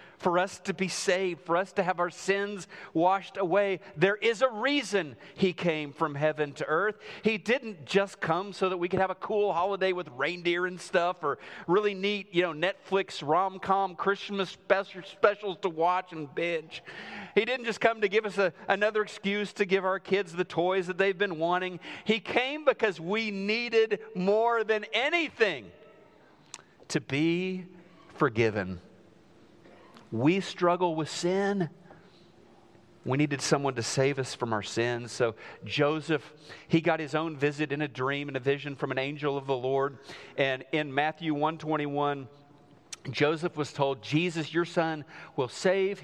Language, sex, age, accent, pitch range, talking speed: English, male, 40-59, American, 145-195 Hz, 165 wpm